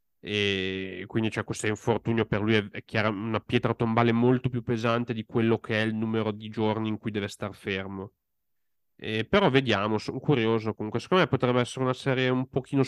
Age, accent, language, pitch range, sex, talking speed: 30-49, native, Italian, 105-120 Hz, male, 180 wpm